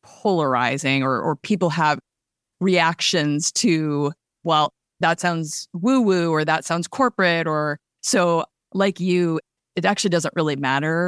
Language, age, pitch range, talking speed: English, 30-49, 150-180 Hz, 135 wpm